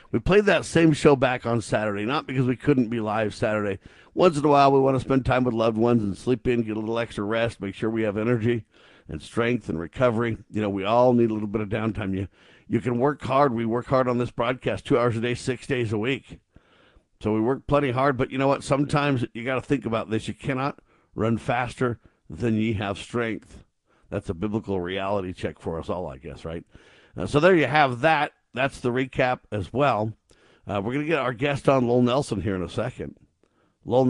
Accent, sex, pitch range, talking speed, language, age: American, male, 105-130 Hz, 235 wpm, English, 50-69